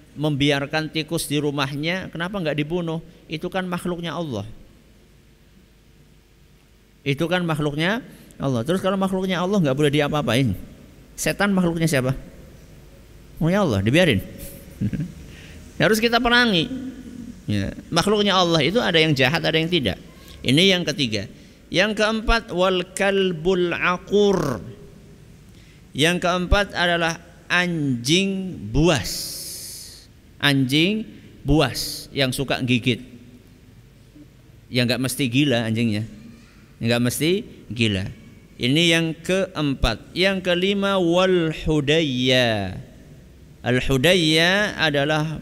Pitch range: 125-175 Hz